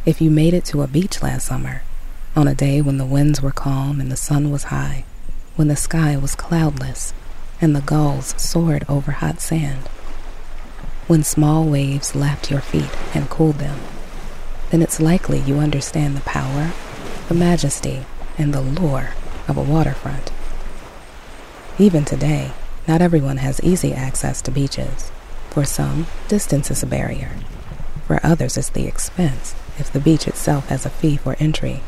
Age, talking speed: 30-49, 165 wpm